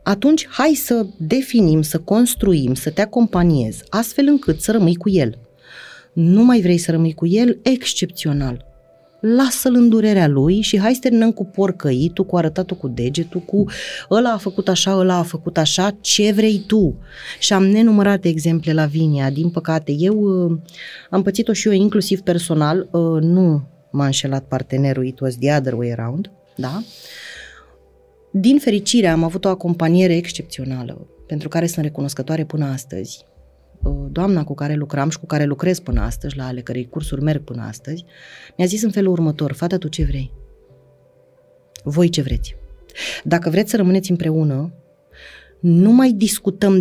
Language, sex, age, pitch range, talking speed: Romanian, female, 30-49, 145-200 Hz, 160 wpm